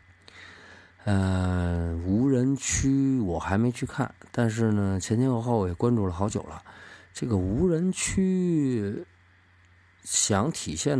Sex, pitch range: male, 90-120 Hz